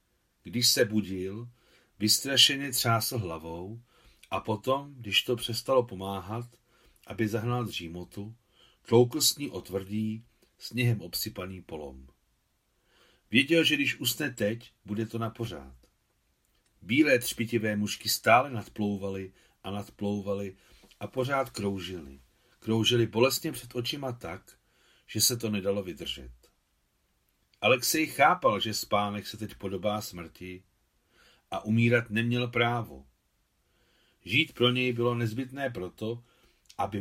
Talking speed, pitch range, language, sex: 110 wpm, 95-125 Hz, Czech, male